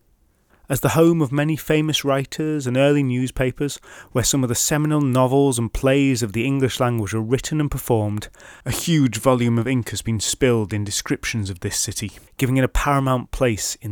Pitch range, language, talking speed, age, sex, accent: 110-145 Hz, English, 195 wpm, 30-49, male, British